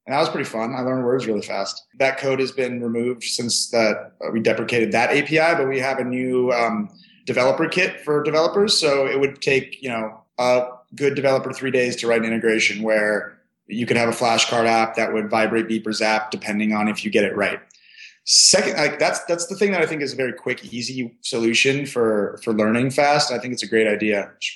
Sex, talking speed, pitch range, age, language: male, 225 wpm, 110-130 Hz, 30-49, English